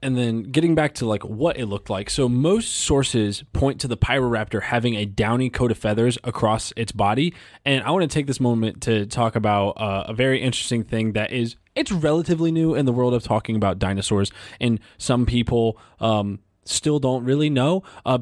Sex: male